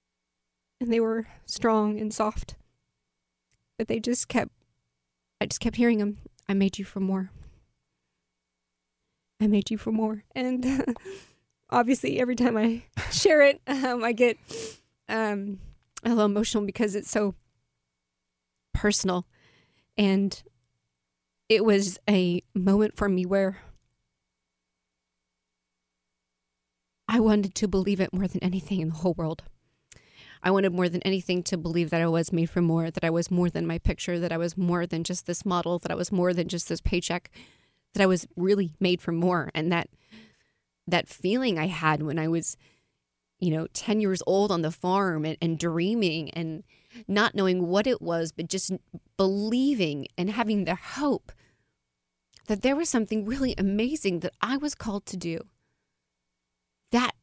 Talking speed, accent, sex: 160 wpm, American, female